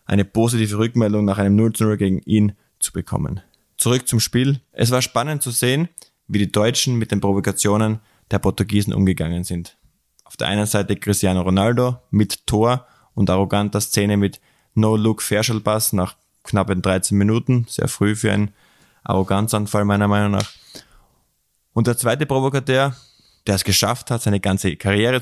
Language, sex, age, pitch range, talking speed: German, male, 20-39, 100-120 Hz, 155 wpm